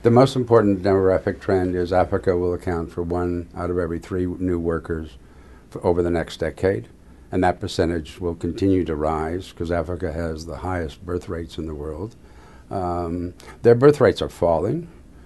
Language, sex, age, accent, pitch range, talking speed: English, male, 60-79, American, 80-100 Hz, 175 wpm